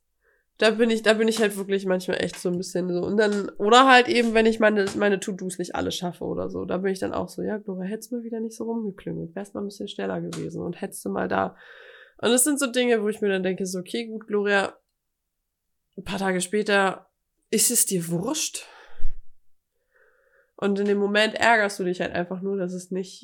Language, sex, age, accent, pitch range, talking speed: German, female, 20-39, German, 180-220 Hz, 235 wpm